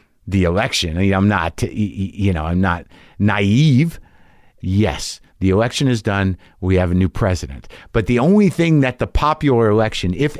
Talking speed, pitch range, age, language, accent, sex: 175 wpm, 95-145 Hz, 50-69, English, American, male